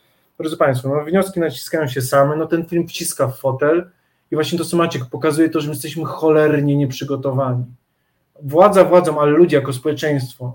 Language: Polish